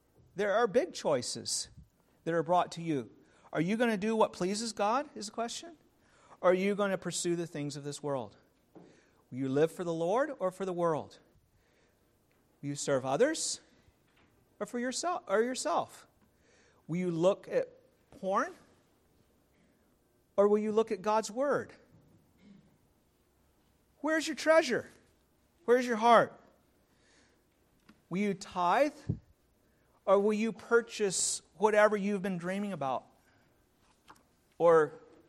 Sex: male